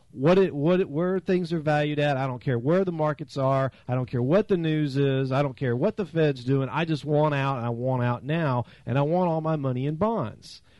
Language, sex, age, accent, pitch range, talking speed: English, male, 40-59, American, 125-155 Hz, 260 wpm